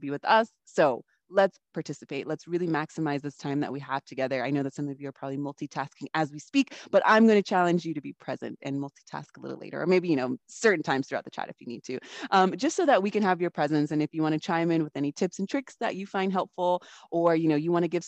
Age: 20-39